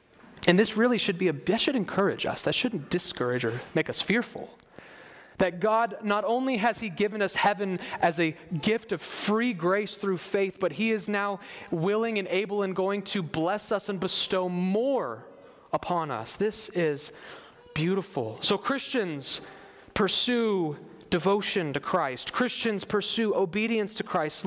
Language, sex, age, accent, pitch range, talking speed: English, male, 30-49, American, 175-215 Hz, 160 wpm